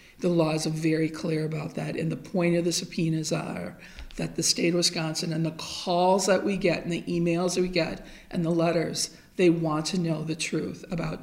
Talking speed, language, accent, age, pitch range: 220 wpm, English, American, 50-69, 165-195 Hz